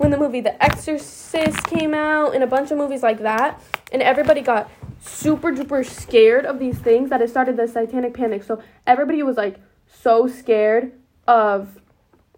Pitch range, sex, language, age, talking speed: 225-275 Hz, female, English, 10-29, 175 wpm